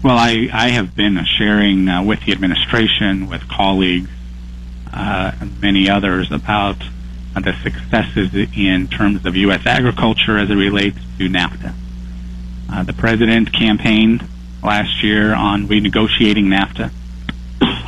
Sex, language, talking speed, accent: male, English, 130 wpm, American